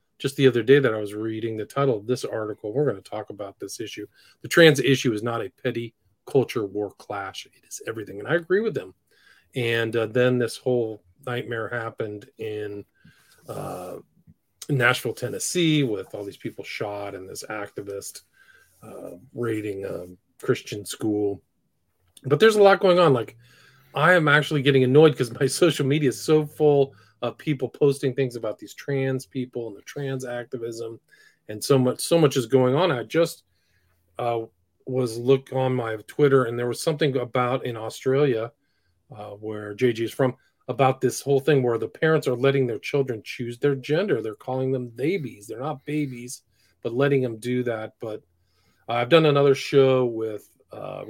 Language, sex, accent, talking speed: English, male, American, 185 wpm